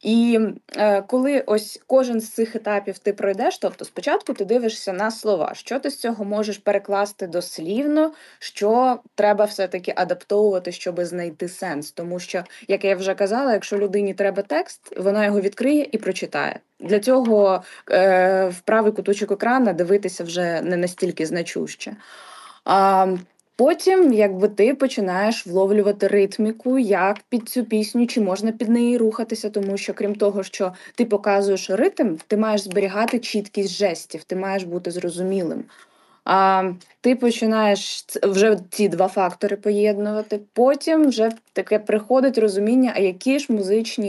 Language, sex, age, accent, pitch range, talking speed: Ukrainian, female, 20-39, native, 190-225 Hz, 145 wpm